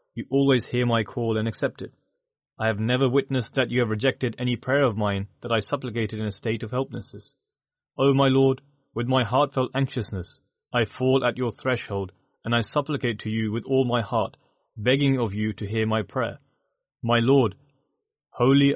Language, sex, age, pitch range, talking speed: English, male, 30-49, 110-135 Hz, 190 wpm